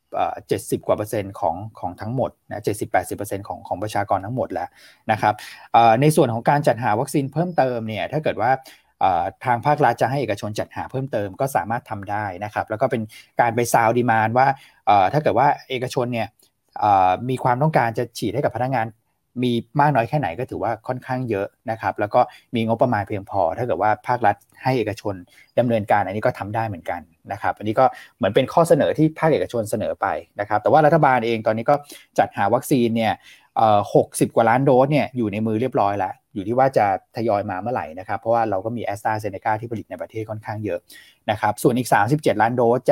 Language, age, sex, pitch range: Thai, 20-39, male, 105-130 Hz